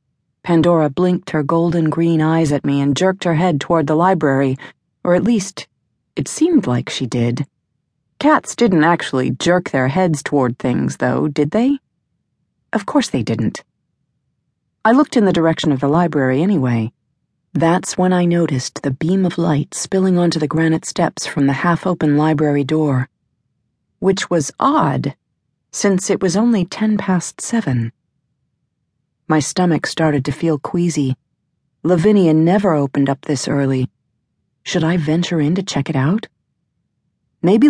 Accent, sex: American, female